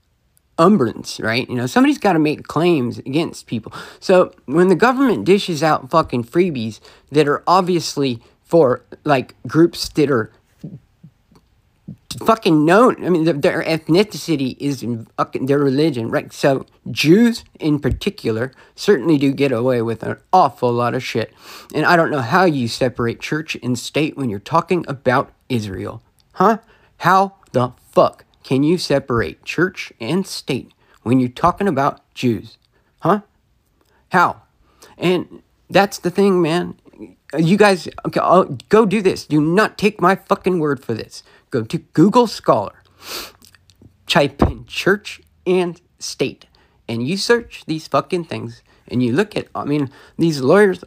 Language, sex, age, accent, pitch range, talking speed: English, male, 40-59, American, 125-180 Hz, 150 wpm